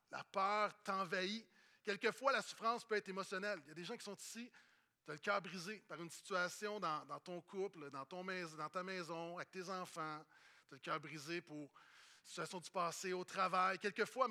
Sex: male